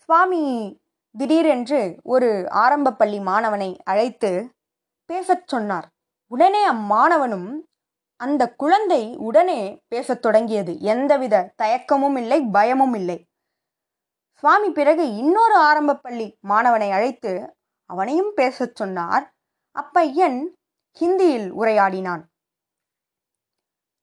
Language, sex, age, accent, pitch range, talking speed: Tamil, female, 20-39, native, 210-305 Hz, 85 wpm